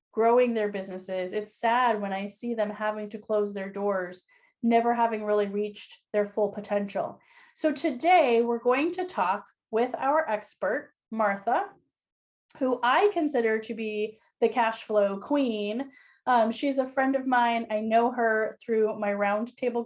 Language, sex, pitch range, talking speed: English, female, 210-255 Hz, 155 wpm